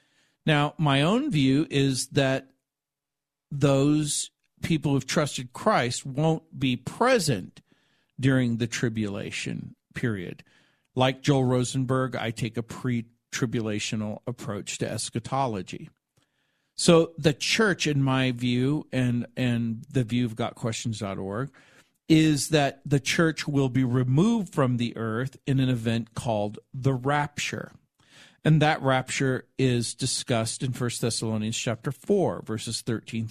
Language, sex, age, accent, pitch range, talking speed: English, male, 50-69, American, 120-145 Hz, 125 wpm